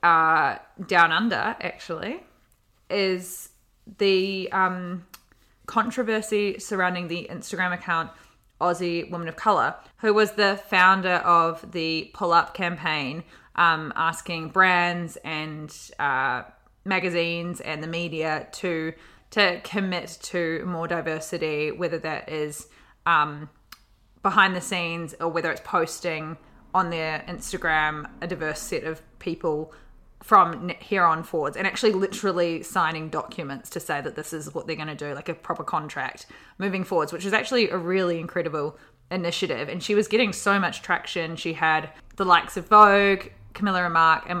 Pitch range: 160-190 Hz